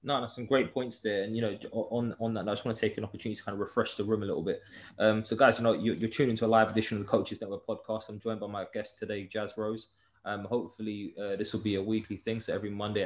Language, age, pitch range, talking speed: English, 20-39, 100-110 Hz, 300 wpm